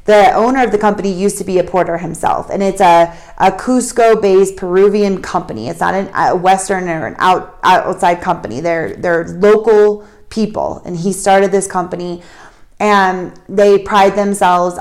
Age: 30-49